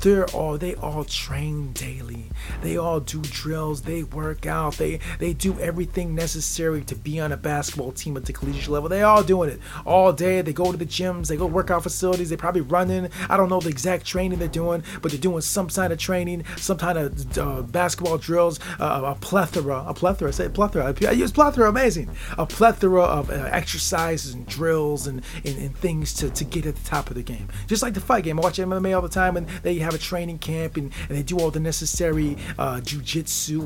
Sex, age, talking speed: male, 30-49, 225 wpm